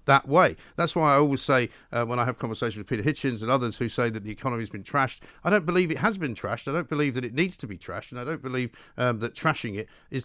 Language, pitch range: English, 115-145 Hz